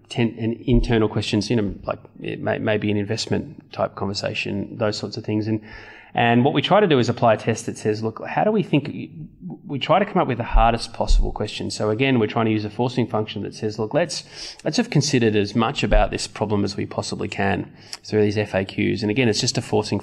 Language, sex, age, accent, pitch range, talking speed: English, male, 20-39, Australian, 105-120 Hz, 235 wpm